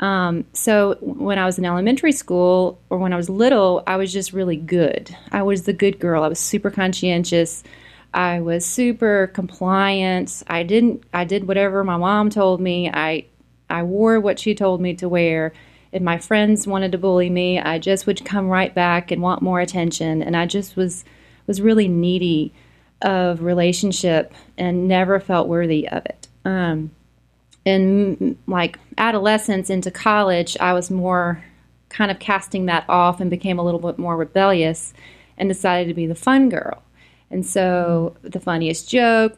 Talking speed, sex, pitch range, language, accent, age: 175 wpm, female, 170-200 Hz, English, American, 30-49